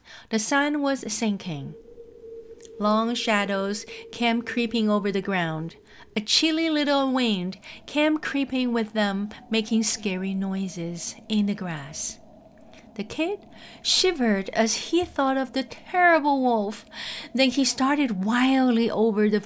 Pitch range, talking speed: 205-280 Hz, 125 wpm